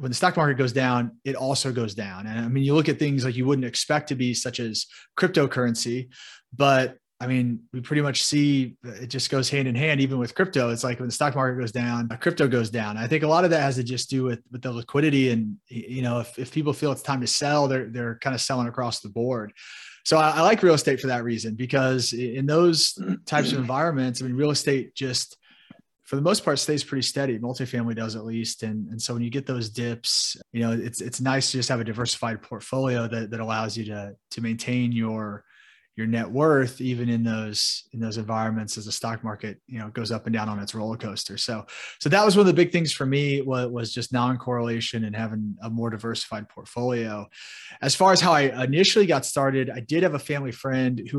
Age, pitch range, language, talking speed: 30-49, 115-140 Hz, English, 240 wpm